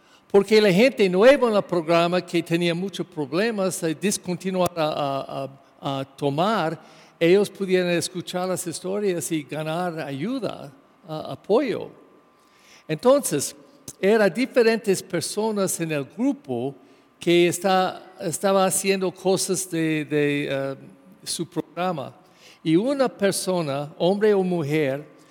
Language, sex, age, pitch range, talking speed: English, male, 50-69, 155-195 Hz, 110 wpm